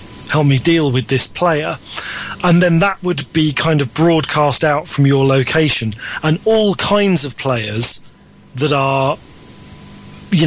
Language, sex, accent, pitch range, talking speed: English, male, British, 130-155 Hz, 150 wpm